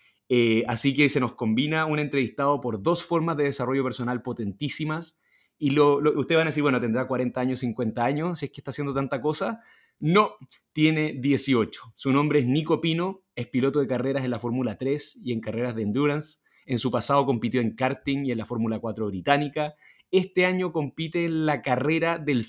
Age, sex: 30-49, male